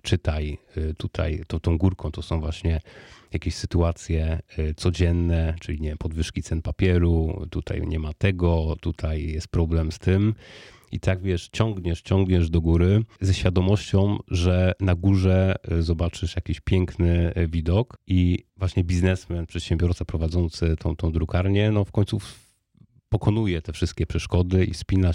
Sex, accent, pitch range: male, native, 85-100 Hz